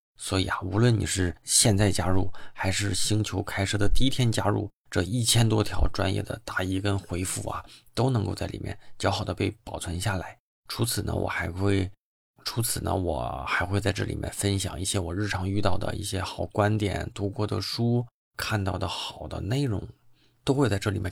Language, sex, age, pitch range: Chinese, male, 20-39, 95-105 Hz